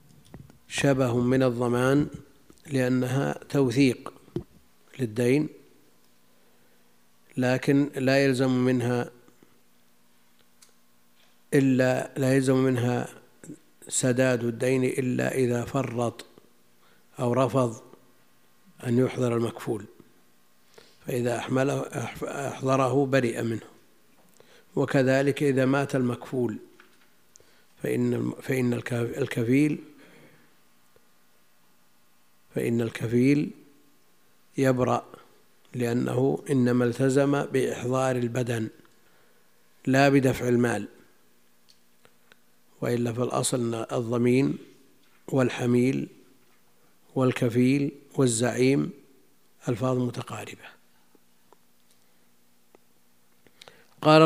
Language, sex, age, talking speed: Arabic, male, 50-69, 60 wpm